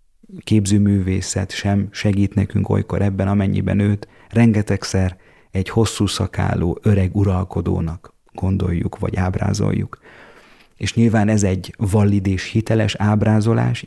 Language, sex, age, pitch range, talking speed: Hungarian, male, 30-49, 90-105 Hz, 110 wpm